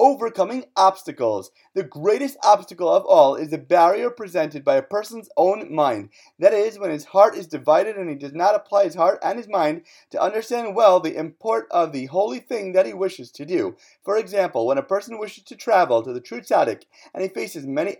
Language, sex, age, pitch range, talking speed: English, male, 30-49, 165-230 Hz, 210 wpm